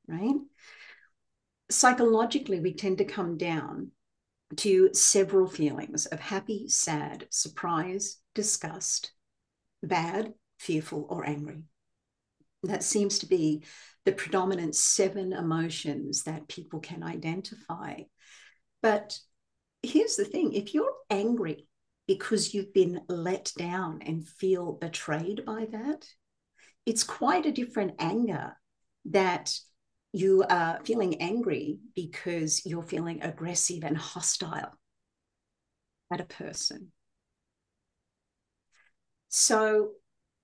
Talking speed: 100 wpm